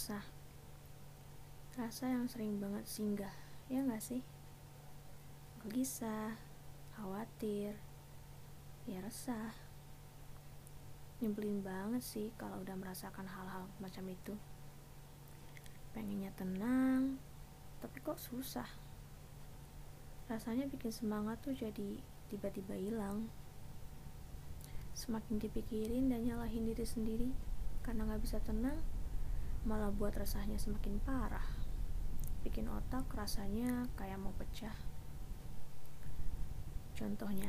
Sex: female